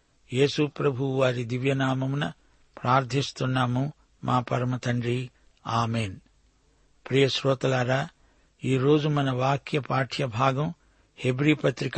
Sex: male